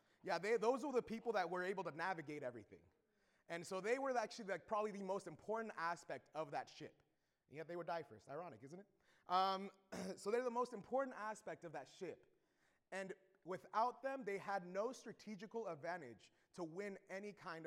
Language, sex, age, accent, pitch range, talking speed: English, male, 30-49, American, 170-215 Hz, 185 wpm